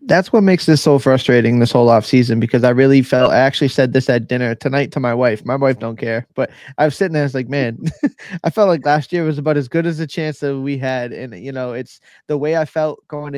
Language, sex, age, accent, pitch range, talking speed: English, male, 20-39, American, 130-155 Hz, 275 wpm